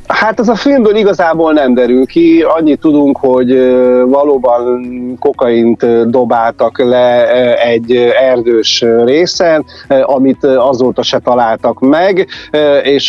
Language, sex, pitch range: Hungarian, male, 125-145 Hz